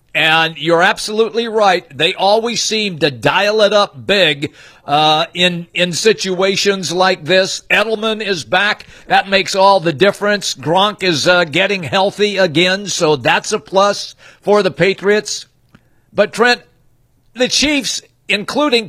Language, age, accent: English, 50-69, American